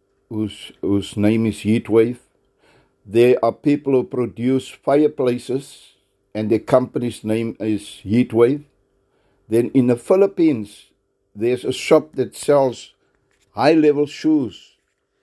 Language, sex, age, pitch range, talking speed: English, male, 60-79, 110-135 Hz, 110 wpm